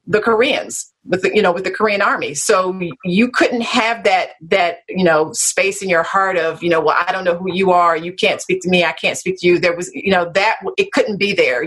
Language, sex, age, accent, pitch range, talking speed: English, female, 40-59, American, 175-210 Hz, 260 wpm